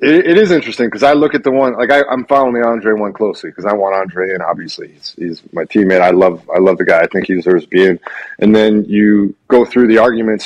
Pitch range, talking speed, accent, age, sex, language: 100-120 Hz, 260 wpm, American, 30-49, male, English